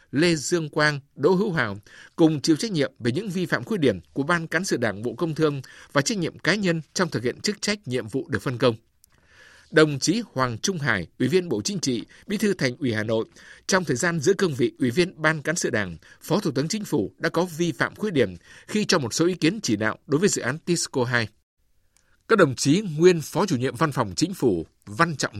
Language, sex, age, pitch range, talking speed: Vietnamese, male, 60-79, 125-175 Hz, 250 wpm